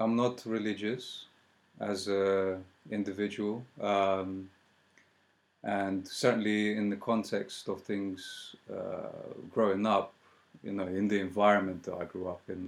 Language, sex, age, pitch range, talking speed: English, male, 30-49, 95-105 Hz, 130 wpm